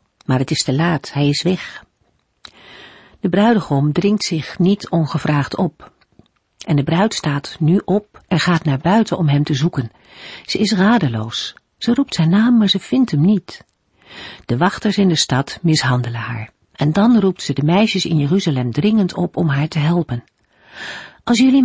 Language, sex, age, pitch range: Dutch, female, 50-69, 140-200 Hz